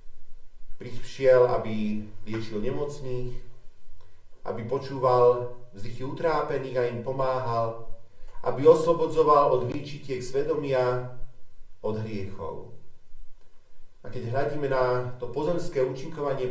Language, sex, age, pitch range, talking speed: Slovak, male, 40-59, 110-135 Hz, 90 wpm